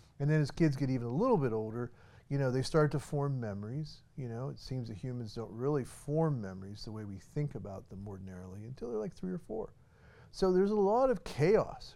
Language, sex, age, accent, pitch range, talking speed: English, male, 40-59, American, 115-150 Hz, 230 wpm